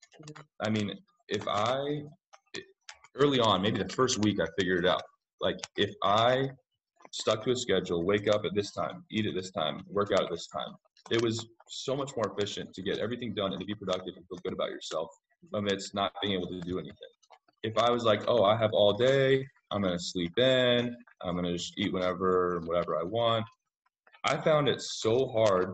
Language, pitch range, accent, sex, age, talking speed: English, 95-115 Hz, American, male, 20-39, 215 wpm